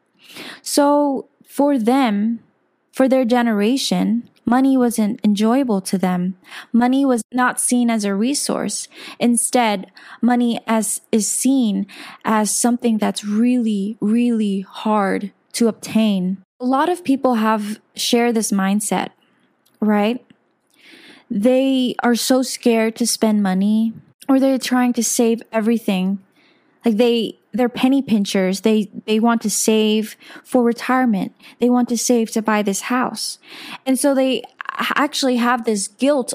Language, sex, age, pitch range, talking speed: English, female, 20-39, 215-250 Hz, 130 wpm